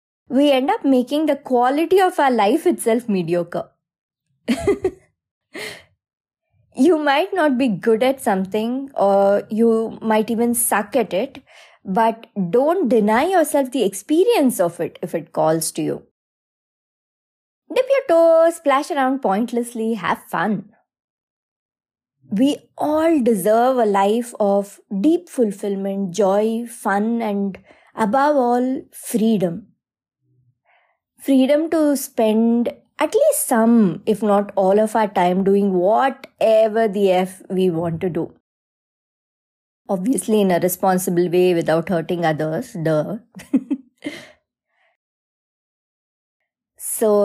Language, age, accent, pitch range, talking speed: English, 20-39, Indian, 195-270 Hz, 115 wpm